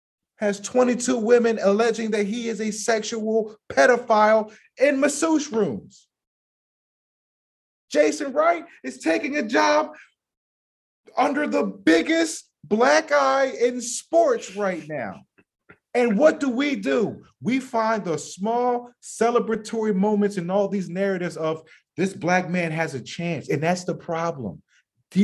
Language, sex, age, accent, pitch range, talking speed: English, male, 30-49, American, 165-225 Hz, 130 wpm